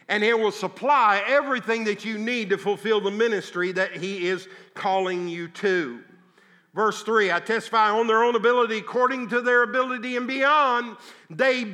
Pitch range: 210-265 Hz